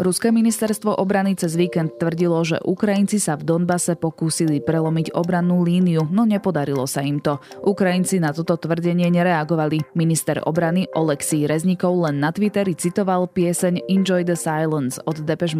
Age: 20-39